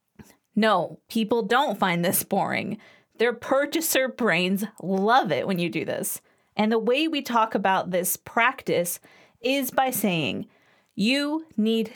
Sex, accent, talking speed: female, American, 140 wpm